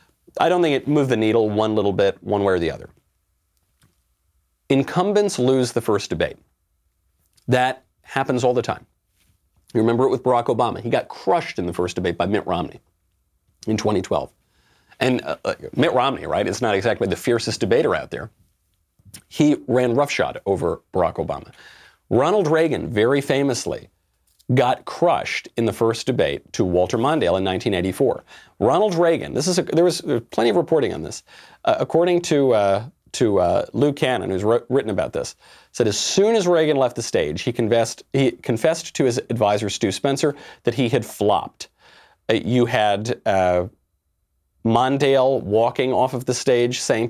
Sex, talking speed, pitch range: male, 175 wpm, 95-135 Hz